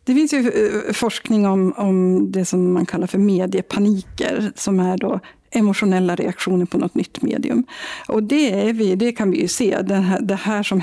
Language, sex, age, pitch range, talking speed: Swedish, female, 50-69, 185-235 Hz, 195 wpm